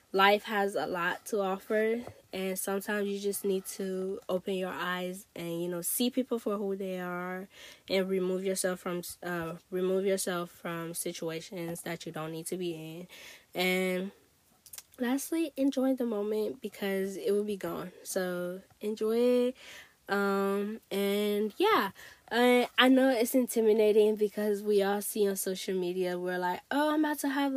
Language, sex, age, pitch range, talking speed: English, female, 10-29, 180-220 Hz, 160 wpm